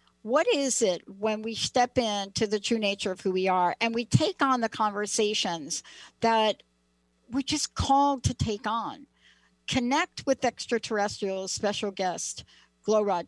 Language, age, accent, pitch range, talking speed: English, 60-79, American, 185-255 Hz, 150 wpm